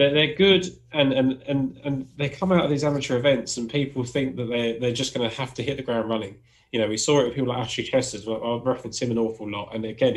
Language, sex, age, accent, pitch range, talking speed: English, male, 20-39, British, 115-145 Hz, 270 wpm